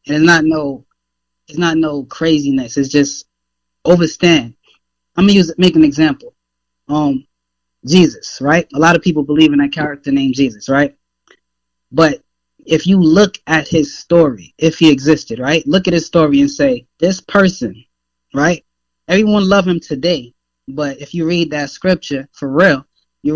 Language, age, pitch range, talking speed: English, 20-39, 135-165 Hz, 160 wpm